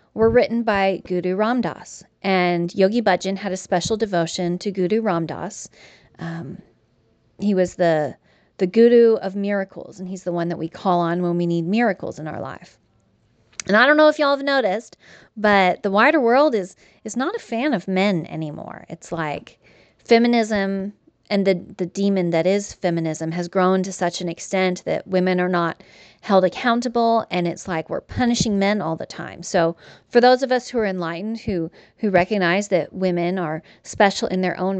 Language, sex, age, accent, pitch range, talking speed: English, female, 30-49, American, 175-220 Hz, 185 wpm